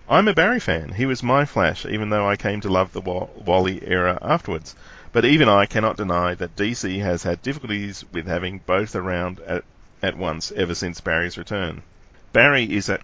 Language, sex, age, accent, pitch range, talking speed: English, male, 40-59, Australian, 85-105 Hz, 195 wpm